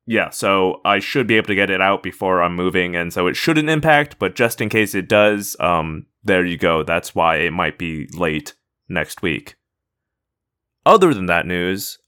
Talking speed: 200 wpm